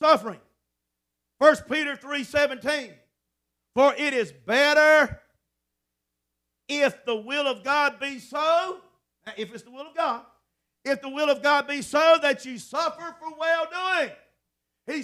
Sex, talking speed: male, 140 wpm